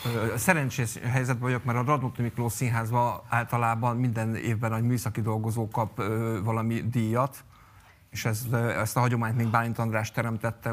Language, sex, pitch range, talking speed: Hungarian, male, 110-125 Hz, 140 wpm